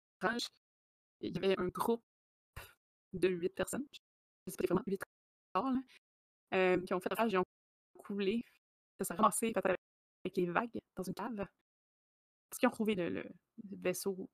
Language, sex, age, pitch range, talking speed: French, female, 20-39, 185-235 Hz, 170 wpm